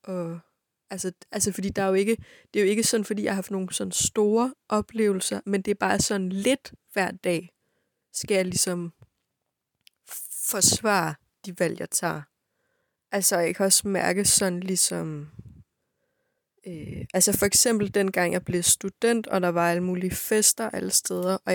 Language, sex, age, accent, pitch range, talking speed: Danish, female, 20-39, native, 185-215 Hz, 165 wpm